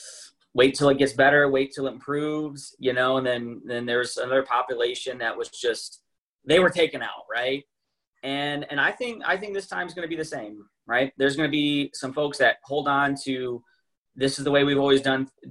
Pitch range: 130-150 Hz